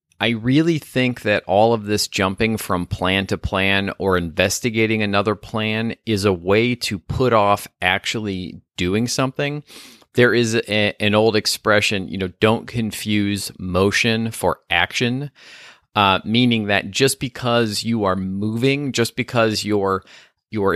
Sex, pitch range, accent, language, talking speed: male, 95-115 Hz, American, English, 140 wpm